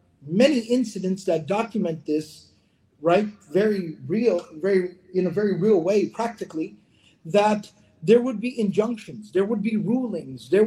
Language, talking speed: English, 140 wpm